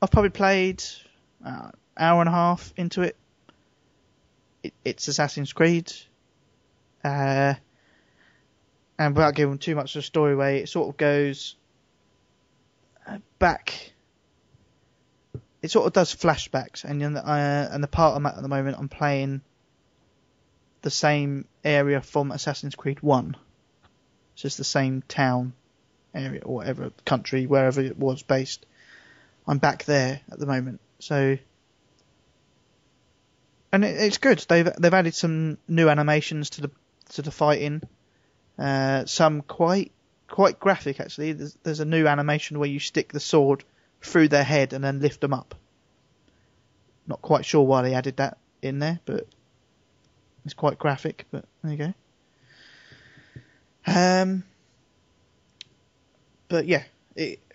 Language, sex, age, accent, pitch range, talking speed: English, male, 20-39, British, 135-160 Hz, 140 wpm